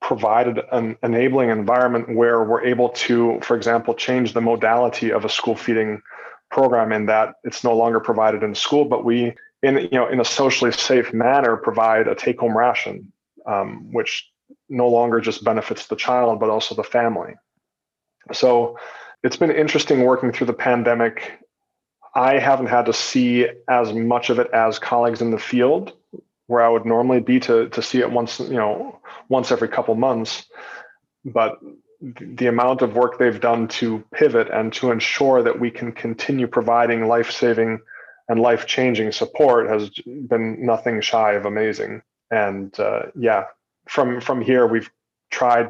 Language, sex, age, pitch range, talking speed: English, male, 20-39, 115-125 Hz, 165 wpm